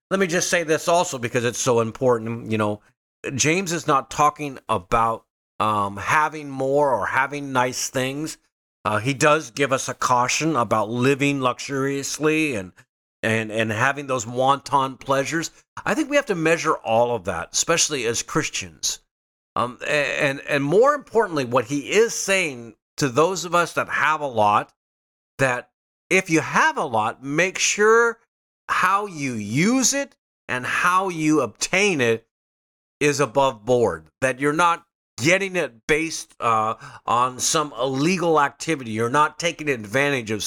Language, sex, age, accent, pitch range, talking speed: English, male, 50-69, American, 120-160 Hz, 155 wpm